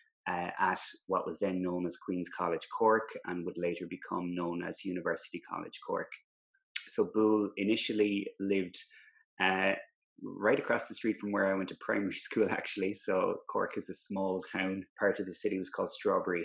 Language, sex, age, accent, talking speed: English, male, 20-39, Irish, 180 wpm